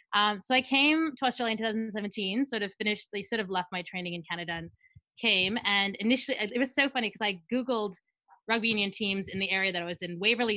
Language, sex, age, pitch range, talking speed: English, female, 20-39, 190-240 Hz, 235 wpm